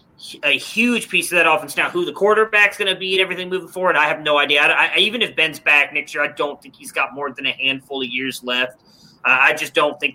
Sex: male